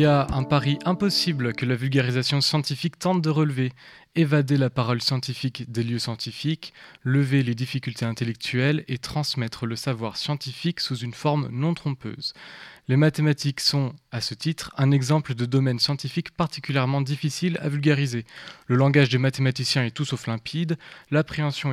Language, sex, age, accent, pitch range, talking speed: French, male, 20-39, French, 130-155 Hz, 160 wpm